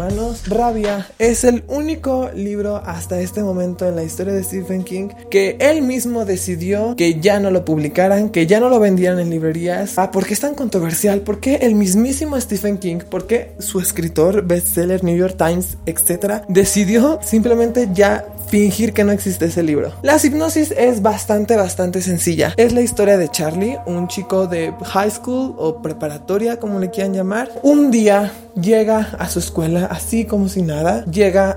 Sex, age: male, 20-39